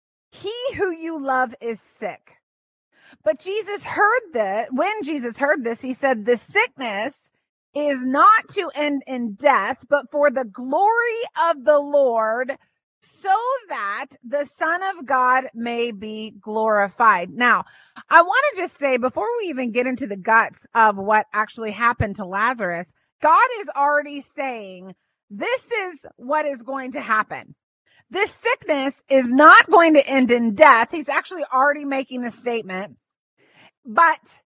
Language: English